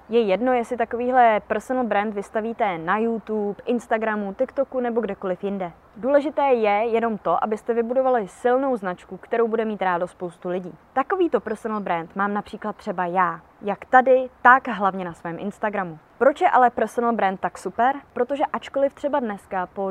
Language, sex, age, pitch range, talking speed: Czech, female, 20-39, 200-255 Hz, 165 wpm